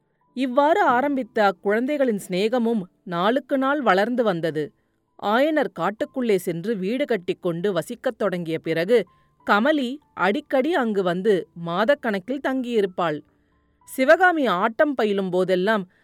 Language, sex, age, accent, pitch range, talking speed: Tamil, female, 30-49, native, 185-260 Hz, 95 wpm